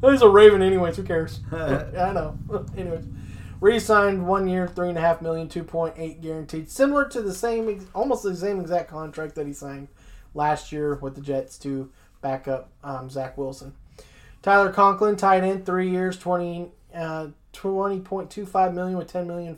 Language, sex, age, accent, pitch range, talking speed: English, male, 20-39, American, 145-195 Hz, 160 wpm